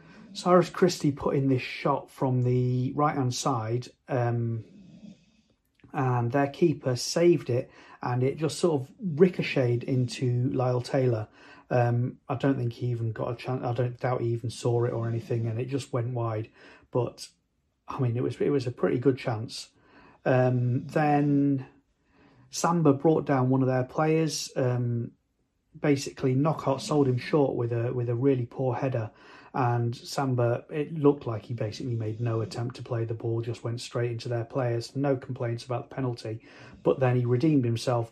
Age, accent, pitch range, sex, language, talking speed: 40-59, British, 120-145 Hz, male, English, 180 wpm